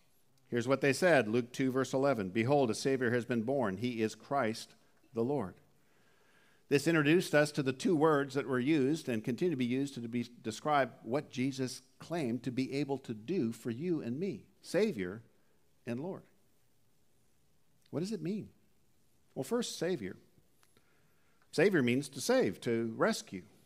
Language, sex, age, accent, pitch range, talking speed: English, male, 50-69, American, 115-150 Hz, 160 wpm